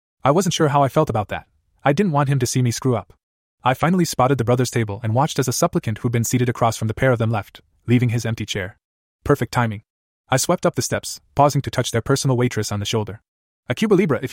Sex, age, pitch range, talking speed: male, 20-39, 110-140 Hz, 260 wpm